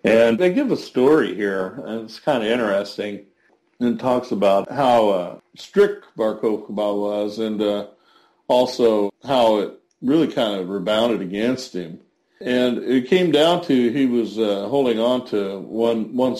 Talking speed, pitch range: 160 wpm, 100-120 Hz